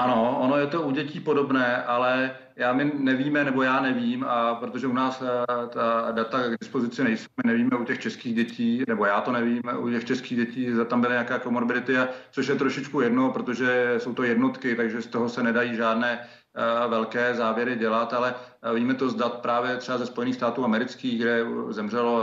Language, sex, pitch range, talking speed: Czech, male, 115-130 Hz, 190 wpm